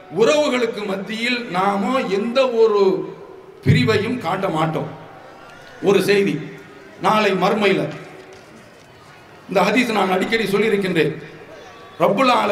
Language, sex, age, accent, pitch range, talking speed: English, male, 50-69, Indian, 185-230 Hz, 90 wpm